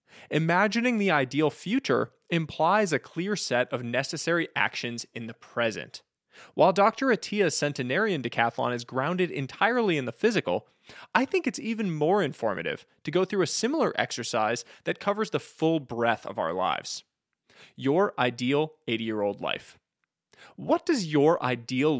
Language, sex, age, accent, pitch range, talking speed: English, male, 20-39, American, 125-200 Hz, 145 wpm